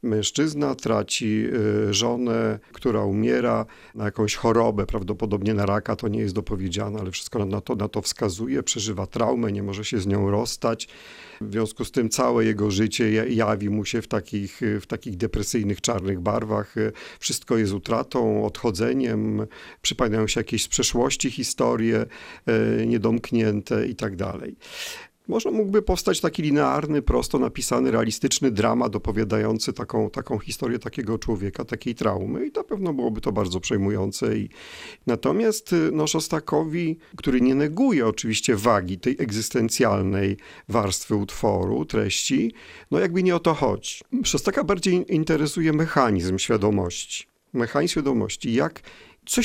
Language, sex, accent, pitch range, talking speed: Polish, male, native, 105-135 Hz, 135 wpm